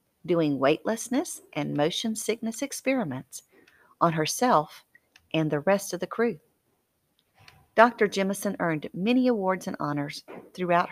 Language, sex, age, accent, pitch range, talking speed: English, female, 50-69, American, 160-230 Hz, 120 wpm